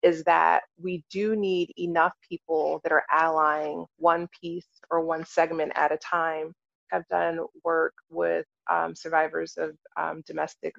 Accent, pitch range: American, 165-190 Hz